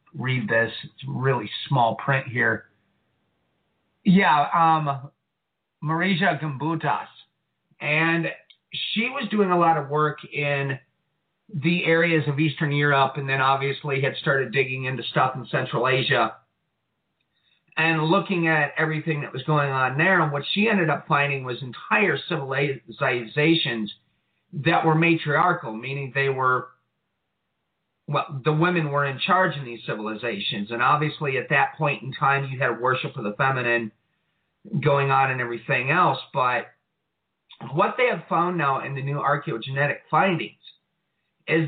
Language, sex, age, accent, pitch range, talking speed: English, male, 40-59, American, 135-170 Hz, 145 wpm